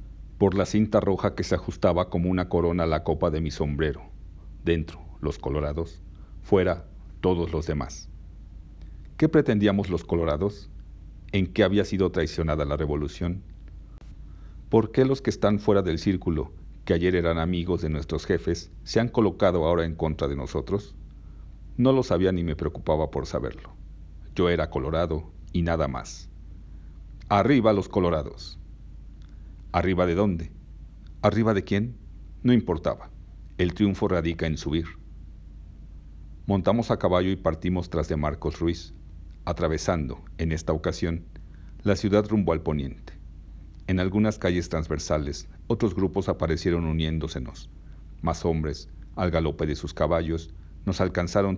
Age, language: 50-69, Spanish